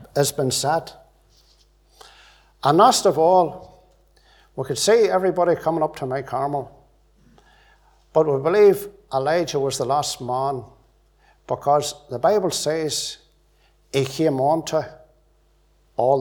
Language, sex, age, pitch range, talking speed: English, male, 60-79, 125-170 Hz, 120 wpm